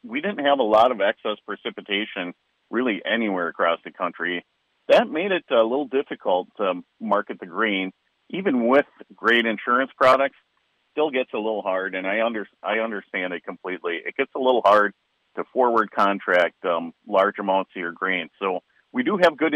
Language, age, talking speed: English, 50-69, 180 wpm